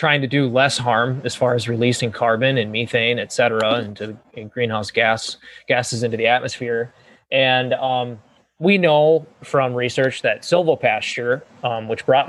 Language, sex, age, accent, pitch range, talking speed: English, male, 20-39, American, 115-135 Hz, 160 wpm